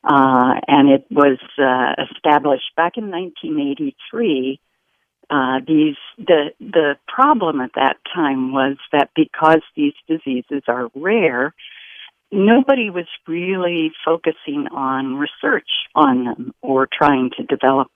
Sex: female